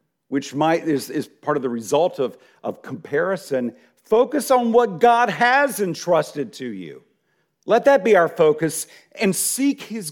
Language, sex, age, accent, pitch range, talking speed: English, male, 50-69, American, 130-200 Hz, 160 wpm